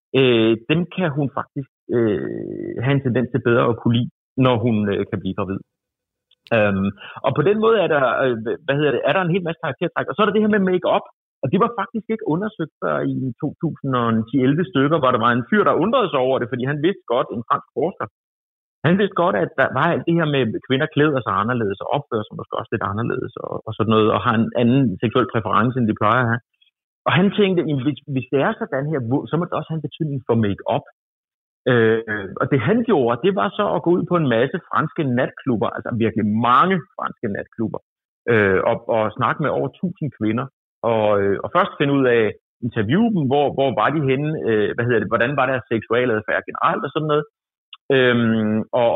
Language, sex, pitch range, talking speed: Danish, male, 115-160 Hz, 225 wpm